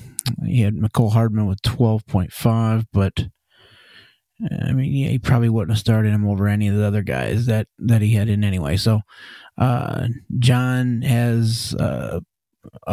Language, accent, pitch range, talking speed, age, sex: English, American, 105-125 Hz, 160 wpm, 30-49, male